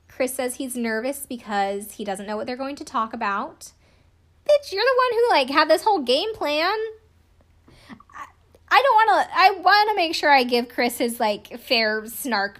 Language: English